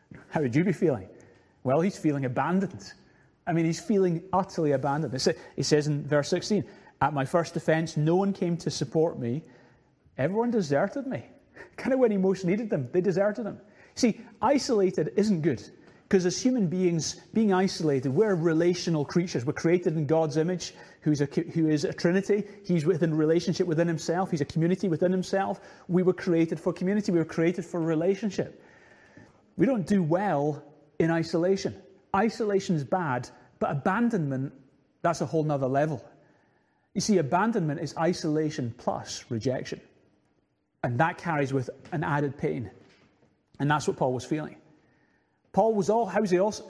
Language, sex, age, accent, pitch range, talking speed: English, male, 30-49, British, 150-195 Hz, 165 wpm